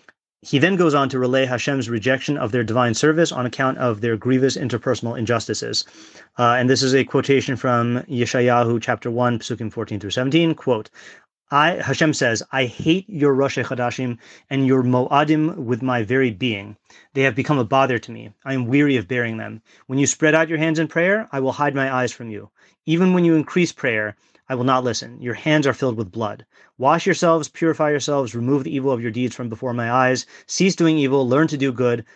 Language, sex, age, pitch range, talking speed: English, male, 30-49, 120-155 Hz, 210 wpm